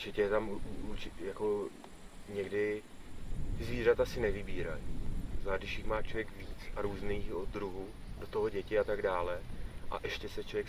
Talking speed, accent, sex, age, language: 155 wpm, native, male, 30-49, Czech